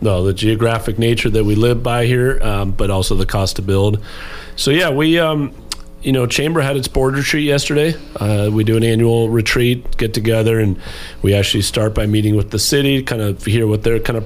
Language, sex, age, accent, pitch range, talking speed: English, male, 40-59, American, 100-120 Hz, 220 wpm